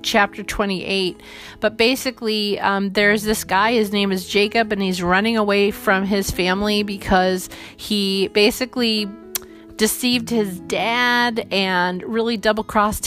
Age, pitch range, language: 30-49, 195-225 Hz, English